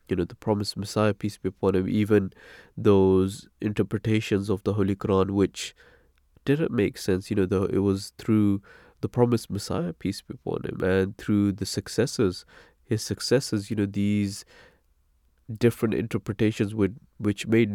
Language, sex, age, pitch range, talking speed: English, male, 20-39, 95-110 Hz, 155 wpm